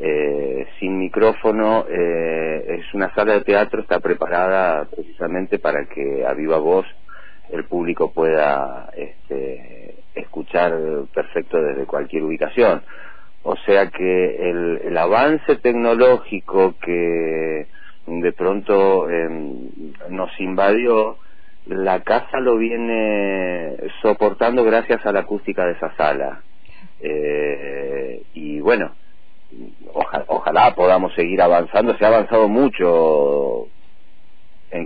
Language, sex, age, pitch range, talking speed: Spanish, male, 40-59, 80-115 Hz, 110 wpm